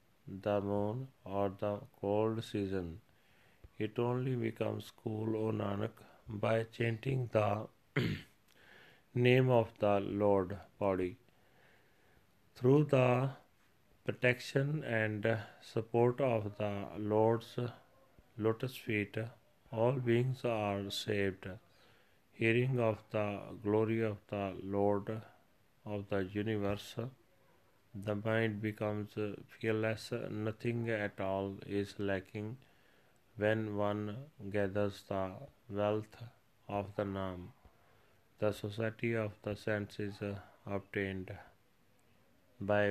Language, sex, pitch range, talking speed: Punjabi, male, 100-115 Hz, 95 wpm